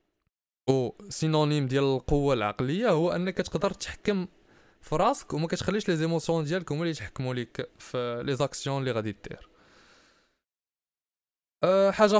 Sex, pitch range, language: male, 140-190 Hz, Arabic